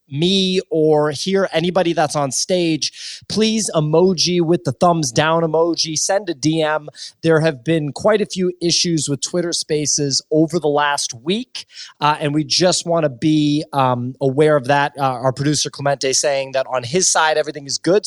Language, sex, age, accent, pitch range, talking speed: English, male, 30-49, American, 145-180 Hz, 175 wpm